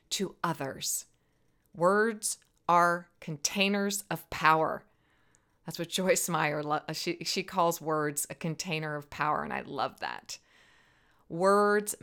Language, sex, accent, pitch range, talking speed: English, female, American, 160-215 Hz, 115 wpm